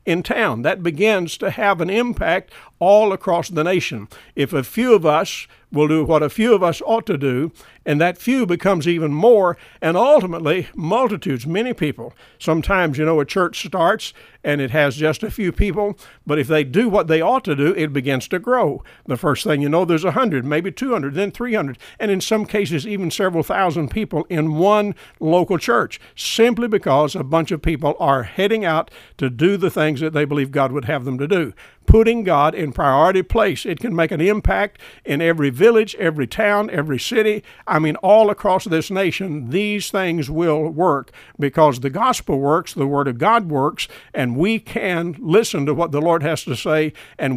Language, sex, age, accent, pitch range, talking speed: English, male, 60-79, American, 150-200 Hz, 200 wpm